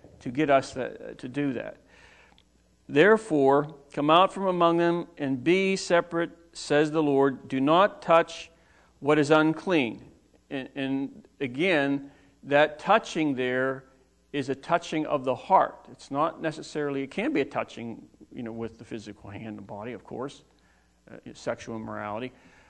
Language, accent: English, American